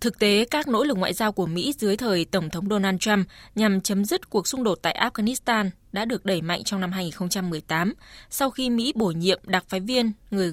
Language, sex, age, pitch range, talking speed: Vietnamese, female, 20-39, 185-230 Hz, 220 wpm